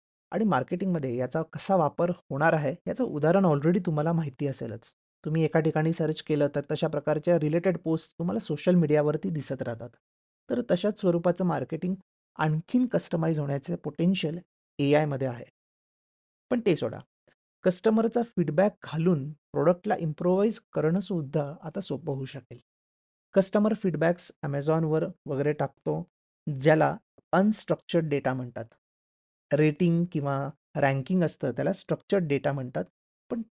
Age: 30-49